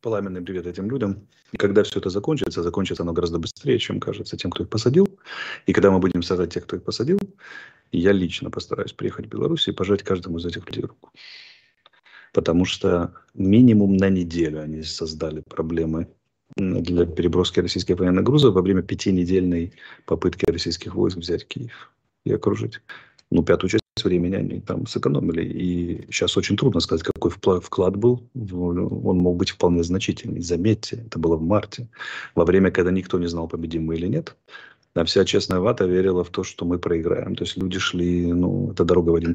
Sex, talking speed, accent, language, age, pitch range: male, 180 wpm, native, Russian, 30-49, 85-115 Hz